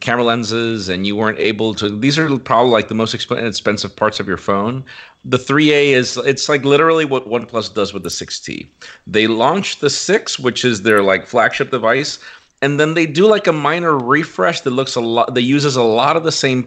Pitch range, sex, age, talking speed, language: 105-140 Hz, male, 40-59, 210 wpm, English